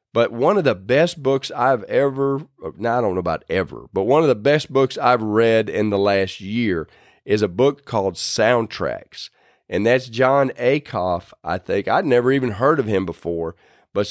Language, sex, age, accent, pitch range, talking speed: English, male, 40-59, American, 105-140 Hz, 185 wpm